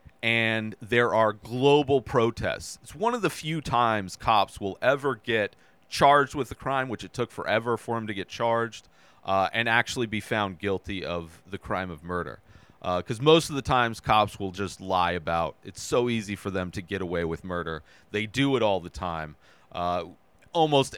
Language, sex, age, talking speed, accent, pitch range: English, male, 30-49, 190 wpm, American, 105-145 Hz